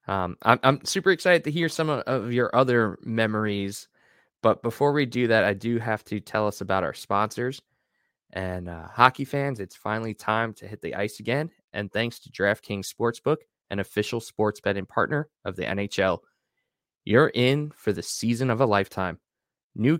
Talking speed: 180 wpm